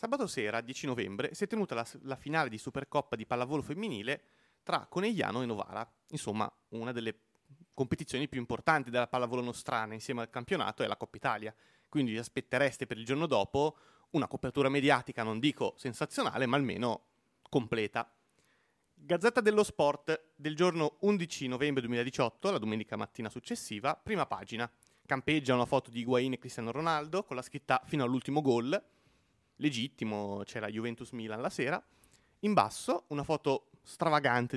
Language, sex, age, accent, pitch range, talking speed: Italian, male, 30-49, native, 120-160 Hz, 155 wpm